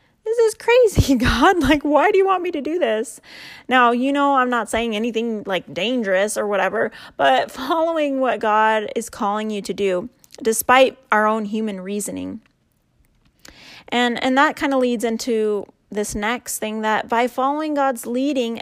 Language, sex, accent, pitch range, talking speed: English, female, American, 220-265 Hz, 170 wpm